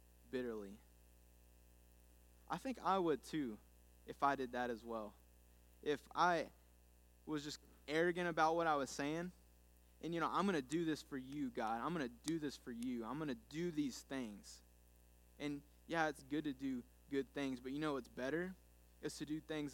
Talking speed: 190 wpm